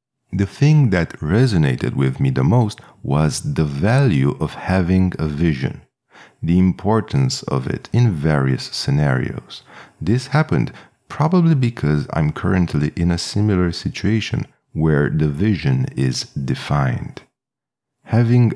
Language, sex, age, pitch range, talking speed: English, male, 40-59, 80-115 Hz, 125 wpm